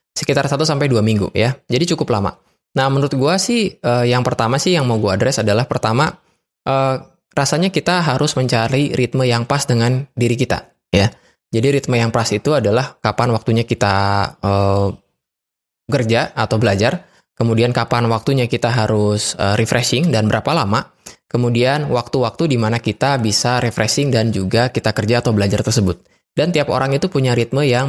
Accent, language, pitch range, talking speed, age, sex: native, Indonesian, 110-135 Hz, 165 wpm, 20-39, male